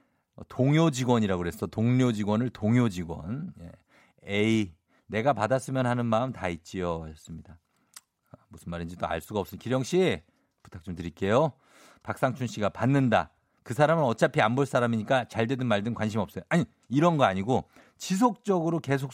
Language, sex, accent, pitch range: Korean, male, native, 95-140 Hz